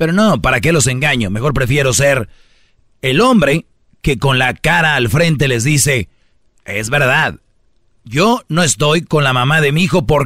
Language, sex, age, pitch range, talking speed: Spanish, male, 40-59, 120-155 Hz, 180 wpm